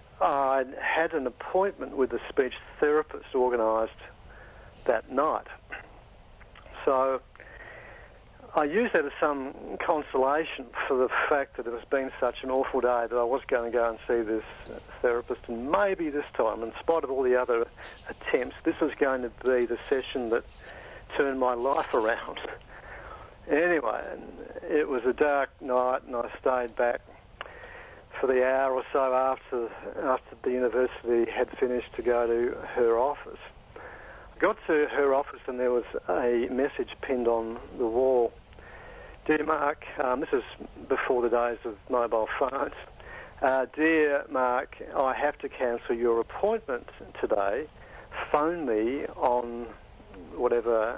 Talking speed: 150 wpm